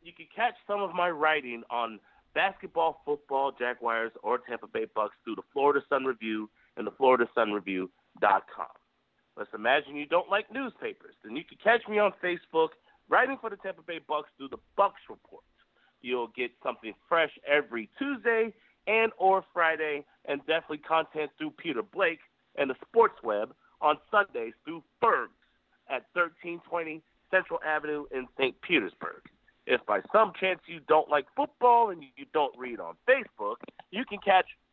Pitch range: 145-225 Hz